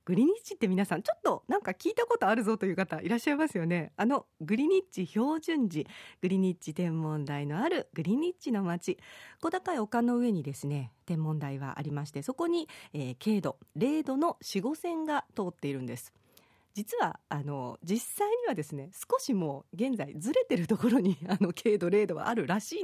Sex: female